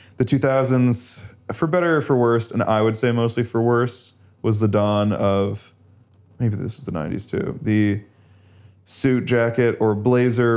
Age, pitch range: 20-39, 100-120 Hz